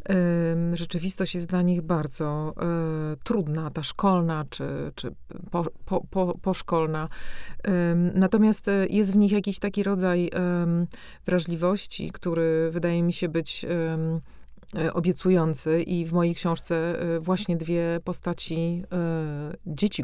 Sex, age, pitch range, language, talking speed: female, 30-49, 160-180 Hz, Polish, 100 wpm